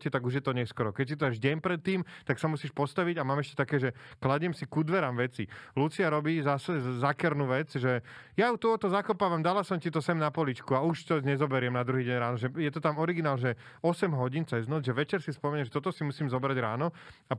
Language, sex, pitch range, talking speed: Slovak, male, 125-160 Hz, 250 wpm